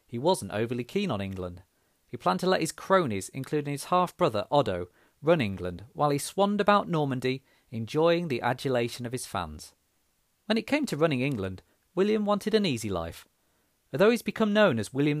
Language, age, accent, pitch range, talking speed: English, 40-59, British, 105-180 Hz, 180 wpm